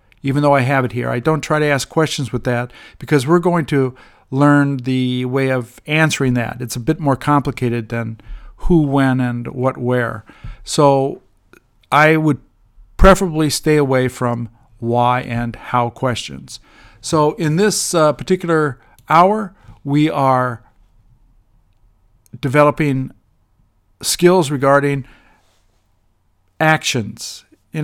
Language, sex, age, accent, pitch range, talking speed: English, male, 50-69, American, 120-150 Hz, 125 wpm